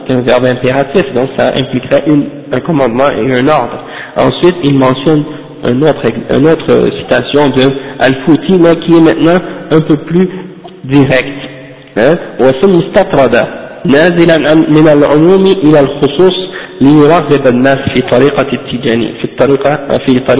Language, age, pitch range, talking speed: French, 50-69, 135-155 Hz, 70 wpm